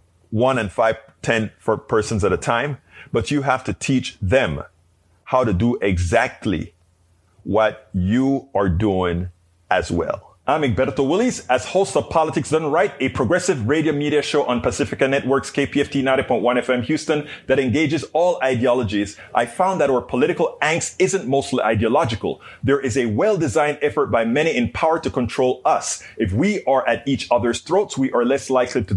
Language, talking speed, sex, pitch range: English, 170 wpm, male, 115-155 Hz